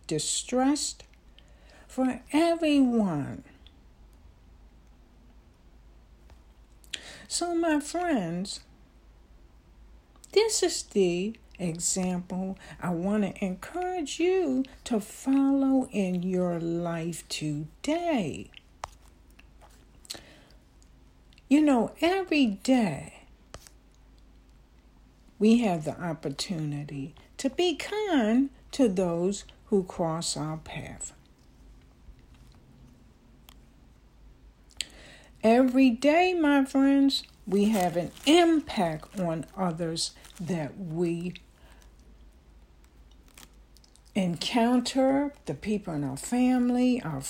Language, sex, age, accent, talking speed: English, female, 60-79, American, 70 wpm